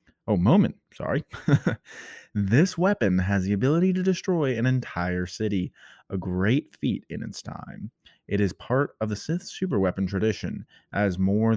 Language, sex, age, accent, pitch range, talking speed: English, male, 30-49, American, 95-135 Hz, 150 wpm